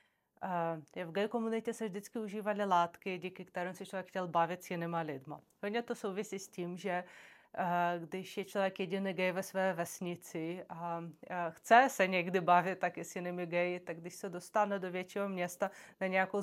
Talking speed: 180 wpm